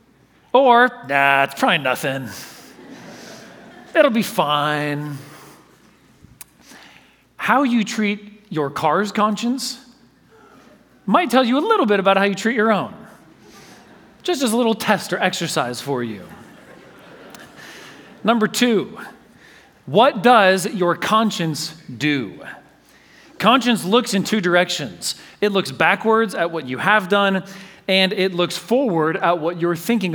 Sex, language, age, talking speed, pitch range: male, English, 40-59, 125 wpm, 170-225 Hz